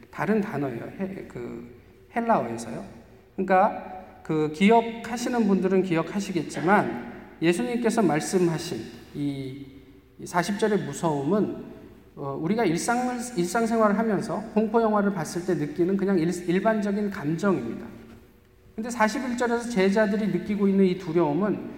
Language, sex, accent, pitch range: Korean, male, native, 145-215 Hz